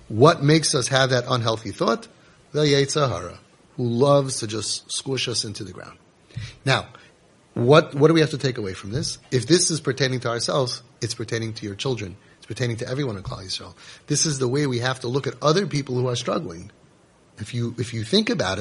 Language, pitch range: English, 115-150 Hz